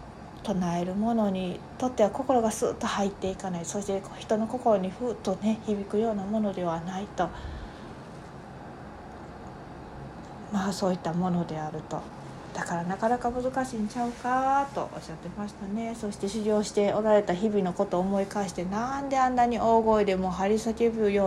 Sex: female